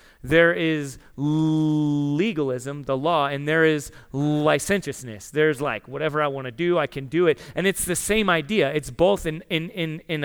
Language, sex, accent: English, male, American